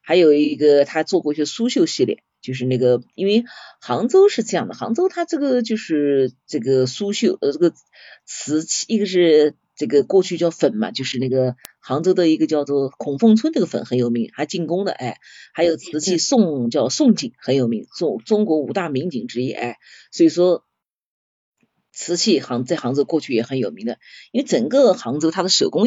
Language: Chinese